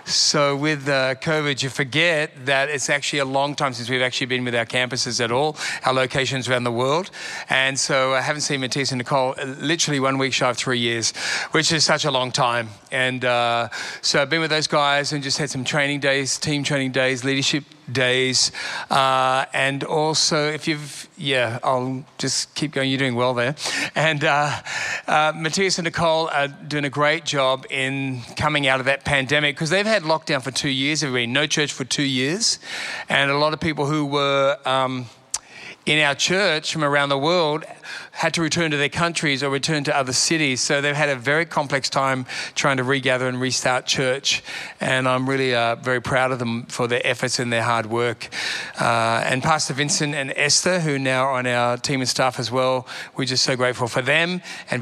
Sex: male